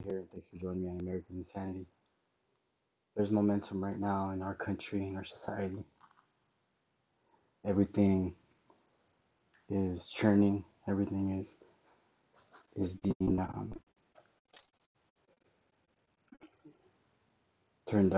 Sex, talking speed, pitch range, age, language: male, 90 wpm, 95-105 Hz, 20-39, English